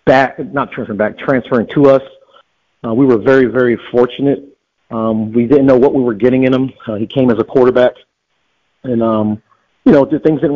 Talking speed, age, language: 205 wpm, 40-59, English